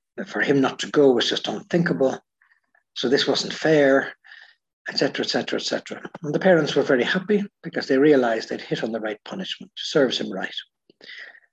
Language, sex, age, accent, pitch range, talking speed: English, male, 60-79, Irish, 125-165 Hz, 175 wpm